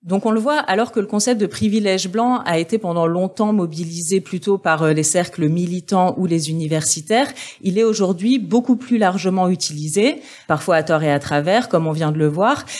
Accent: French